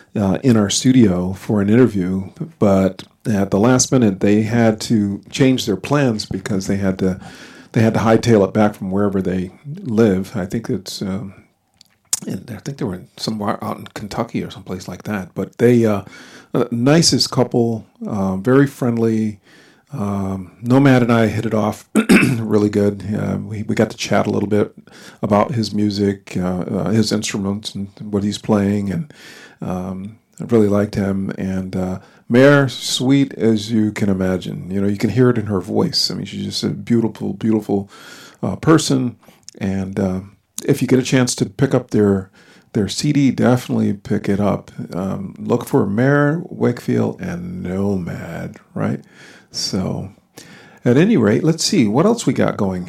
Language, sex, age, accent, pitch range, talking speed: English, male, 50-69, American, 100-130 Hz, 175 wpm